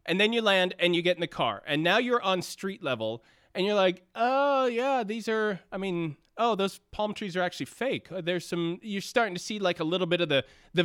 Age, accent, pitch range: 20-39, American, 160-195 Hz